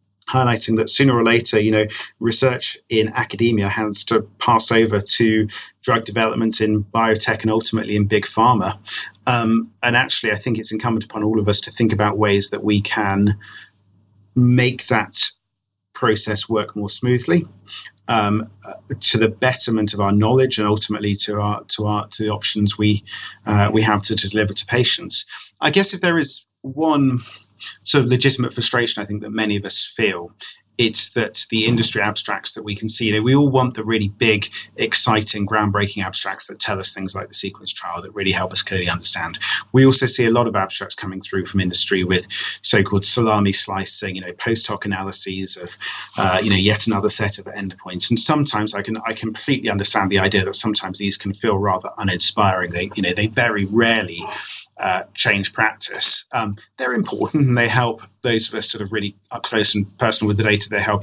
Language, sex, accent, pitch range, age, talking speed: English, male, British, 100-115 Hz, 40-59, 195 wpm